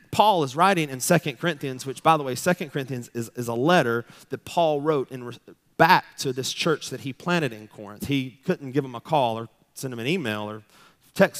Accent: American